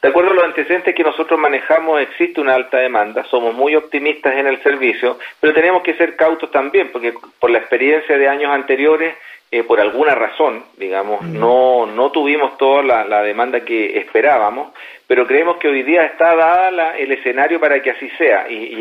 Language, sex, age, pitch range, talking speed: Spanish, male, 40-59, 120-165 Hz, 190 wpm